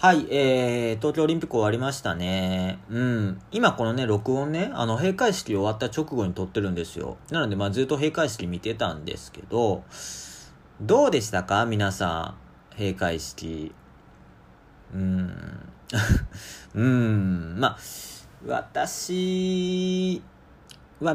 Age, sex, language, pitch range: 40-59, male, Japanese, 85-145 Hz